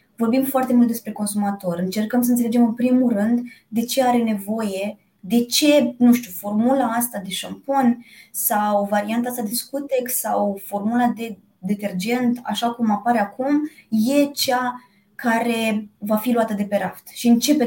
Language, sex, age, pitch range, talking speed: Romanian, female, 20-39, 200-245 Hz, 160 wpm